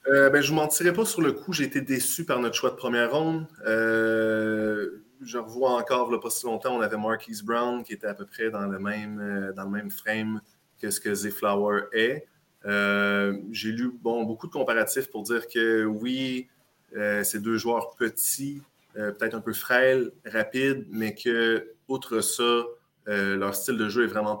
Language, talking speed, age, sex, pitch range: French, 205 wpm, 20-39, male, 105-125 Hz